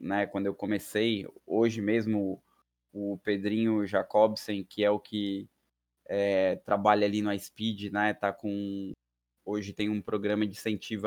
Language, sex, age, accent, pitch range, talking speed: Portuguese, male, 20-39, Brazilian, 100-120 Hz, 150 wpm